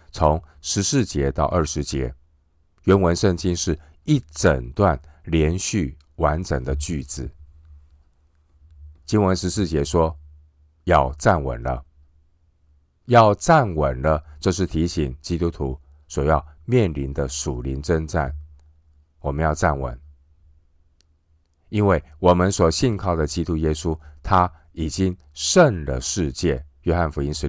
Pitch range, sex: 75-85 Hz, male